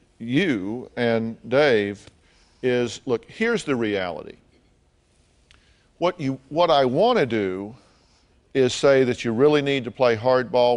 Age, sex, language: 50-69, male, English